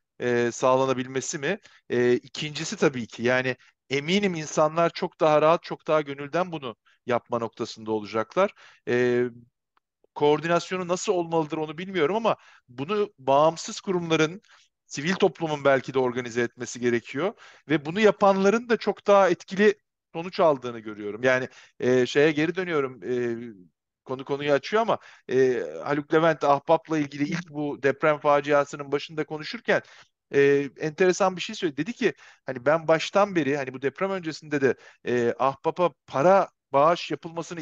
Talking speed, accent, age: 135 wpm, native, 50-69